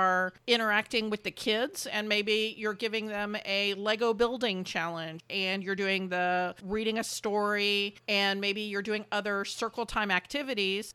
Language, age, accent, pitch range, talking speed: English, 40-59, American, 195-230 Hz, 155 wpm